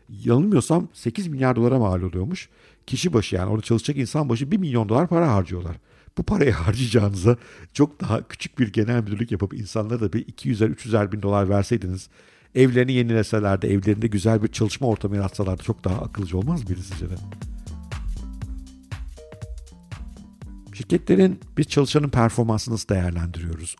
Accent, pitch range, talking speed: native, 100-130 Hz, 145 wpm